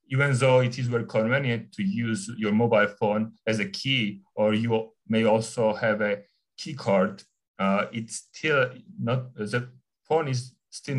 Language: English